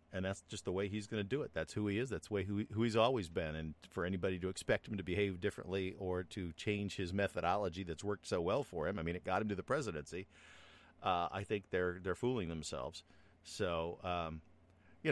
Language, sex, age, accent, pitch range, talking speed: English, male, 50-69, American, 80-100 Hz, 240 wpm